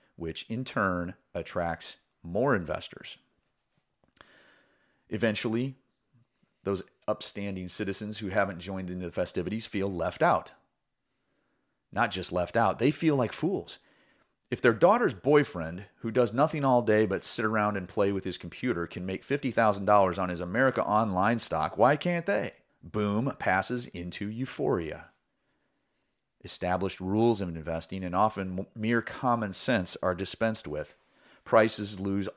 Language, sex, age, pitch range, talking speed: English, male, 30-49, 90-110 Hz, 135 wpm